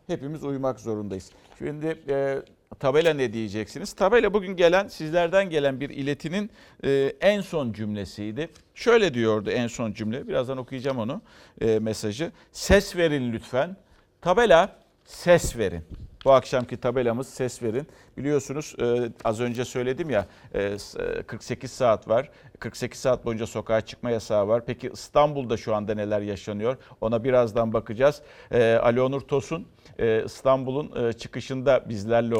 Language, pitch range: Turkish, 115-150 Hz